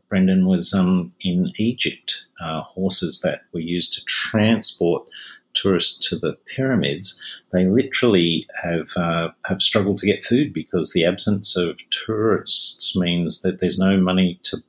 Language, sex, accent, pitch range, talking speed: English, male, Australian, 85-100 Hz, 145 wpm